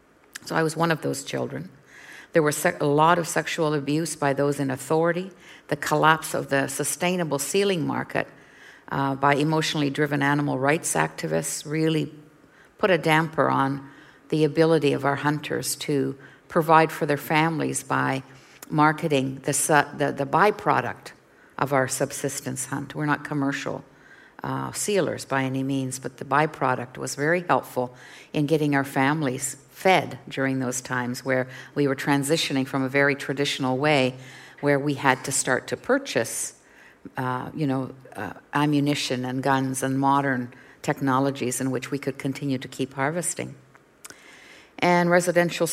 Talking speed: 150 wpm